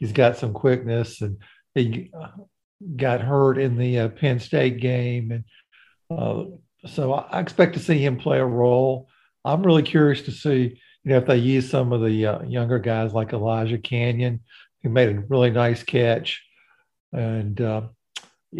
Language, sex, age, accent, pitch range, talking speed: English, male, 50-69, American, 115-140 Hz, 160 wpm